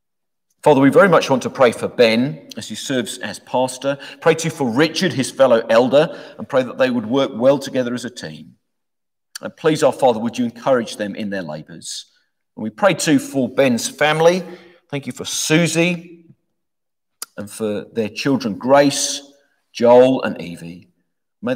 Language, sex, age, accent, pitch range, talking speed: English, male, 50-69, British, 110-170 Hz, 175 wpm